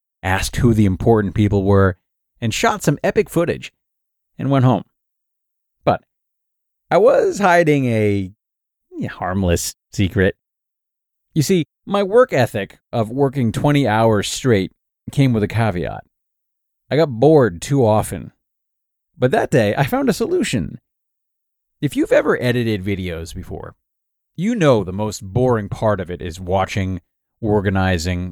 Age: 40-59